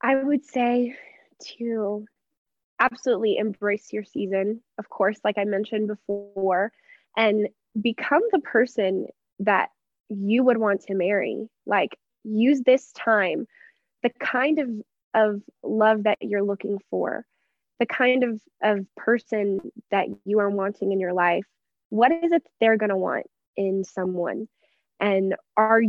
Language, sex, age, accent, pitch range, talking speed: English, female, 20-39, American, 205-240 Hz, 140 wpm